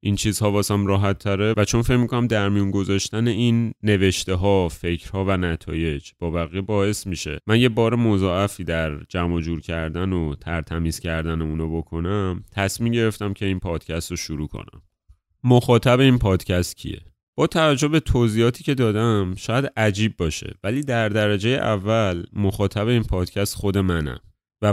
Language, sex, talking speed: Persian, male, 160 wpm